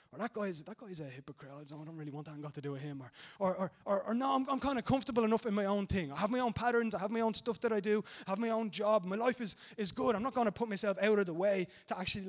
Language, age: English, 20-39